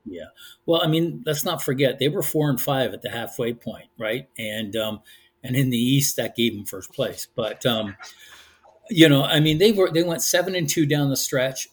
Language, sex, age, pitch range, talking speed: English, male, 50-69, 115-140 Hz, 225 wpm